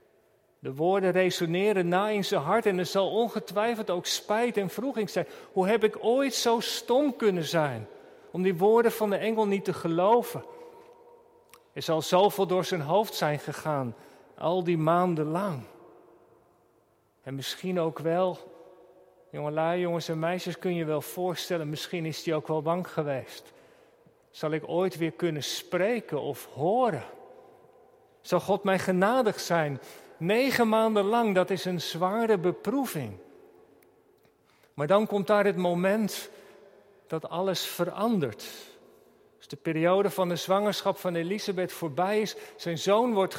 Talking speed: 150 wpm